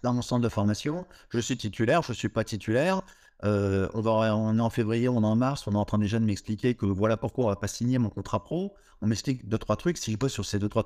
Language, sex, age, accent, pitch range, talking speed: French, male, 50-69, French, 105-135 Hz, 295 wpm